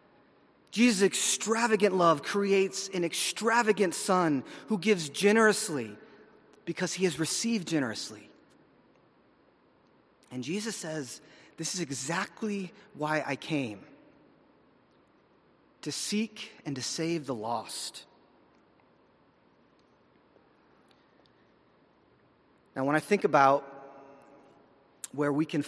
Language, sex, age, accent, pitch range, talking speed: English, male, 30-49, American, 140-175 Hz, 90 wpm